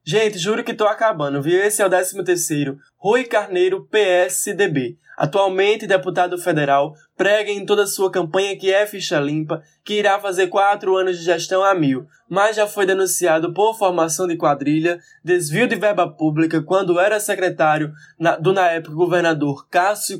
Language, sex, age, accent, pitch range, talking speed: Portuguese, male, 10-29, Brazilian, 170-200 Hz, 165 wpm